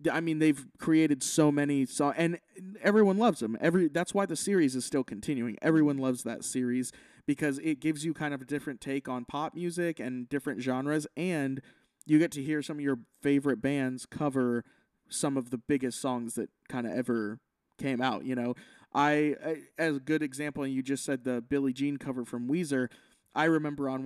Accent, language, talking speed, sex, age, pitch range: American, English, 200 wpm, male, 20-39, 130-150 Hz